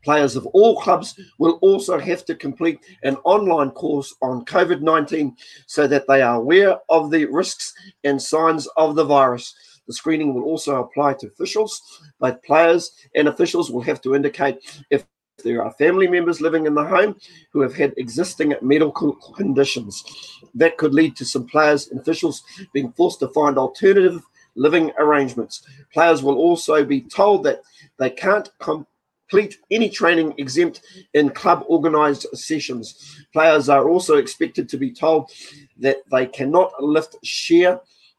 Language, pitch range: English, 140-175 Hz